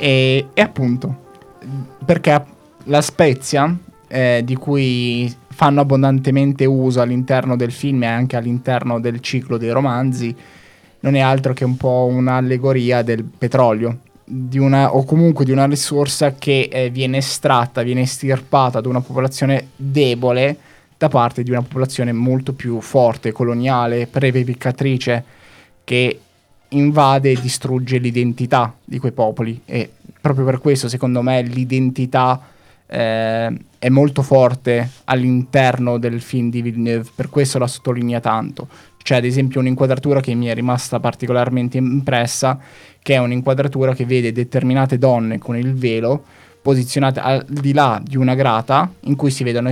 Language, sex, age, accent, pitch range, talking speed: Italian, male, 20-39, native, 120-135 Hz, 140 wpm